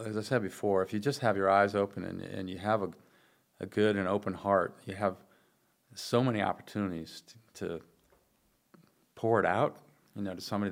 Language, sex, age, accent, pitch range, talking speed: English, male, 40-59, American, 95-110 Hz, 195 wpm